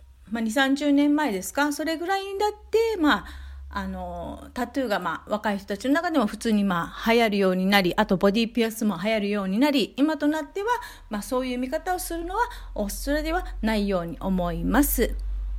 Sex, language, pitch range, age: female, Japanese, 205-305 Hz, 40-59